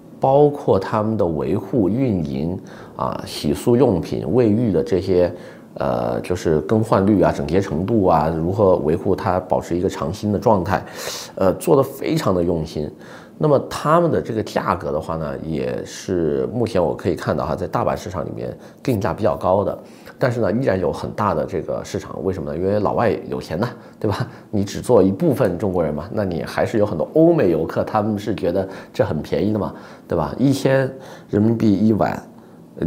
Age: 30-49